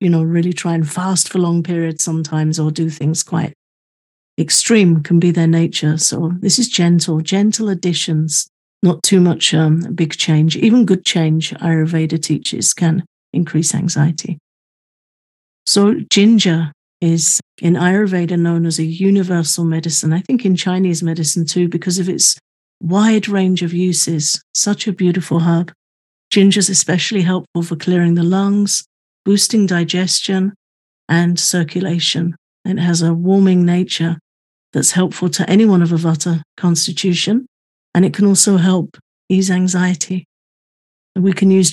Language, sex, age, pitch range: English, female, 50-69, 165-190 Hz